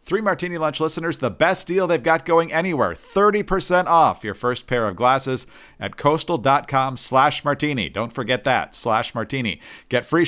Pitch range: 110-155 Hz